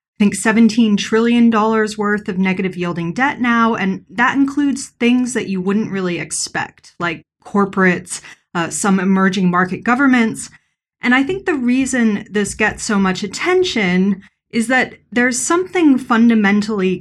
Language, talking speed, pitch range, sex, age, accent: English, 140 wpm, 180-230 Hz, female, 30-49, American